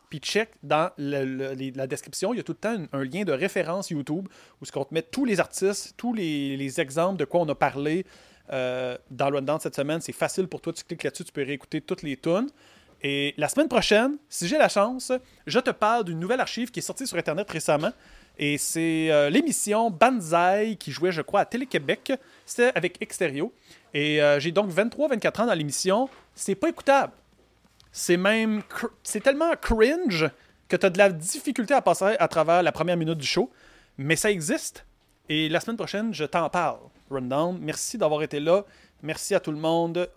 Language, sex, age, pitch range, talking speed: French, male, 30-49, 150-210 Hz, 210 wpm